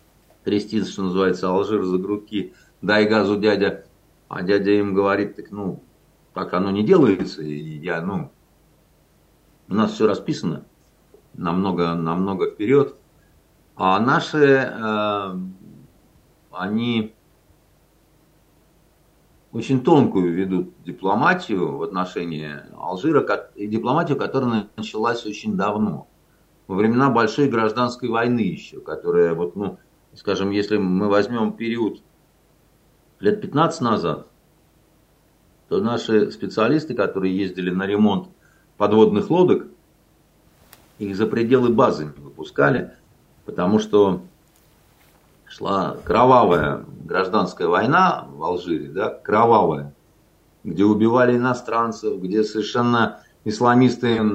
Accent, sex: native, male